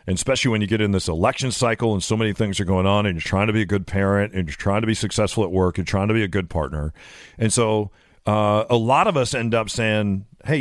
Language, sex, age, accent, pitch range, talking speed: English, male, 40-59, American, 100-130 Hz, 285 wpm